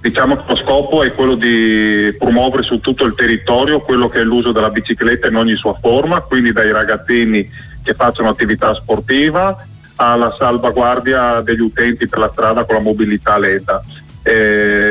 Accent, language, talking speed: native, Italian, 165 wpm